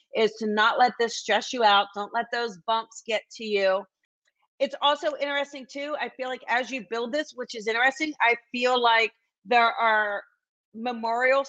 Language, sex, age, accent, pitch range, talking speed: English, female, 40-59, American, 210-255 Hz, 185 wpm